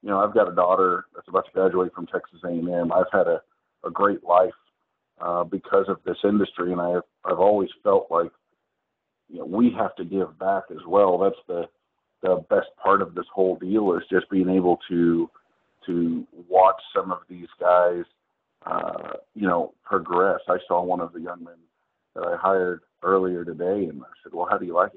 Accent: American